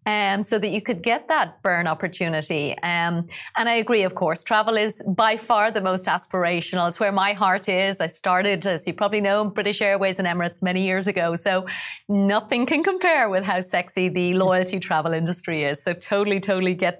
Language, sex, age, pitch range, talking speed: English, female, 30-49, 185-240 Hz, 200 wpm